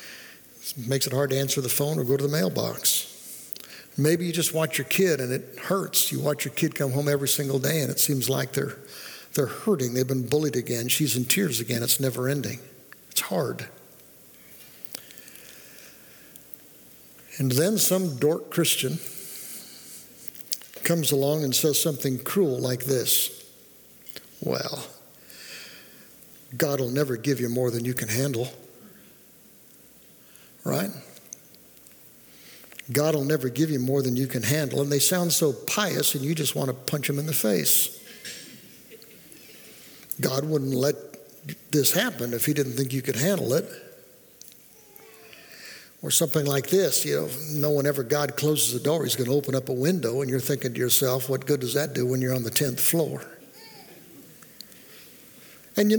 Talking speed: 160 wpm